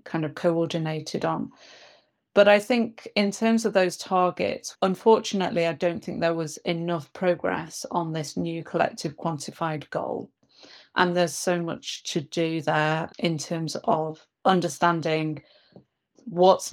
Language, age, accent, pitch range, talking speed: English, 30-49, British, 165-190 Hz, 135 wpm